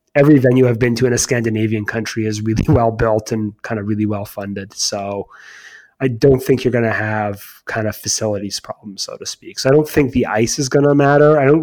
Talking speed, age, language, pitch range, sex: 235 wpm, 30-49, English, 110-140 Hz, male